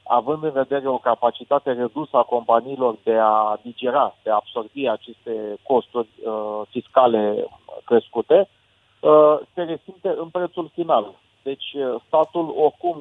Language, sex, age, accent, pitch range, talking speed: Romanian, male, 40-59, native, 120-150 Hz, 135 wpm